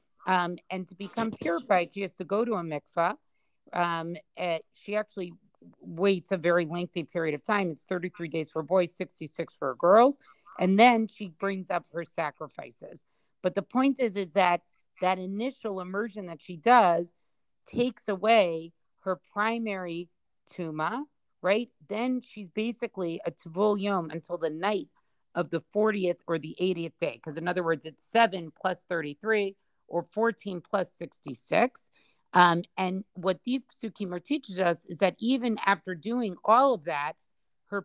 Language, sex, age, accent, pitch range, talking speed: English, female, 50-69, American, 170-210 Hz, 155 wpm